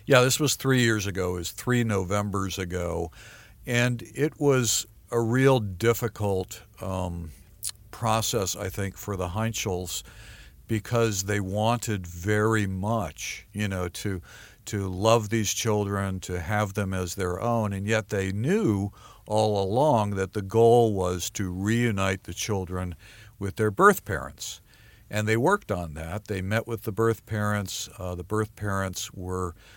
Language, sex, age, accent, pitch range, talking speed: English, male, 50-69, American, 90-110 Hz, 150 wpm